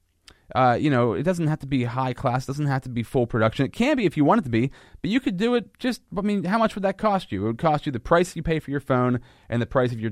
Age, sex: 30-49, male